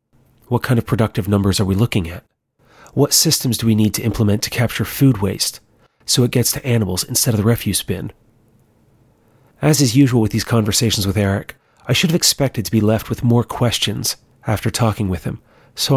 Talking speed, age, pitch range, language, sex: 200 wpm, 30-49, 110-140 Hz, English, male